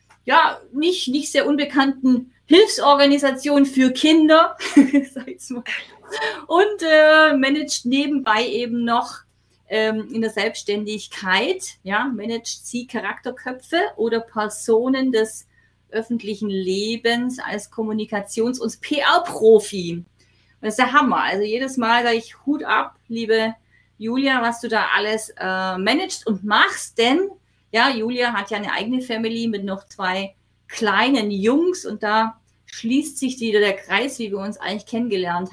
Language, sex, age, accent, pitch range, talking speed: German, female, 30-49, German, 215-270 Hz, 130 wpm